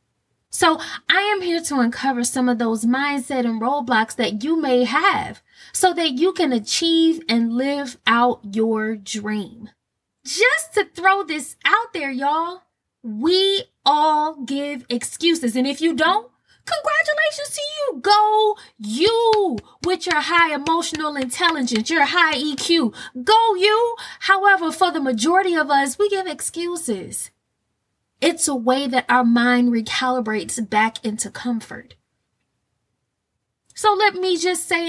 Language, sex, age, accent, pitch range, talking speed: English, female, 20-39, American, 240-340 Hz, 140 wpm